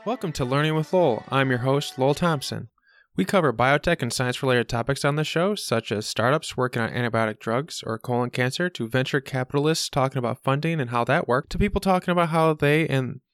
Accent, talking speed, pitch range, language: American, 210 wpm, 120-160 Hz, English